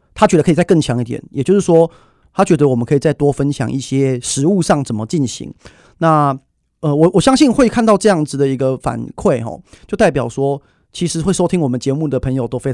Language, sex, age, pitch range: Chinese, male, 30-49, 135-175 Hz